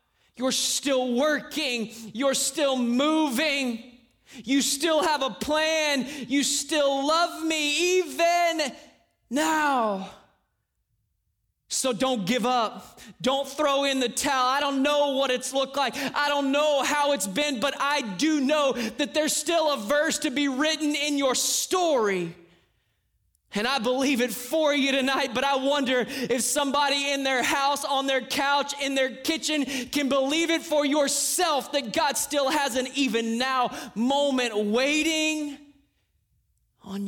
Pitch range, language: 195-290 Hz, English